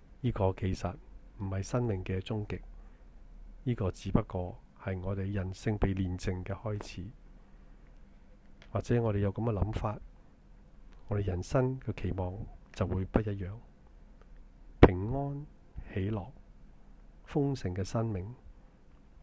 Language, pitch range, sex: Chinese, 90-110 Hz, male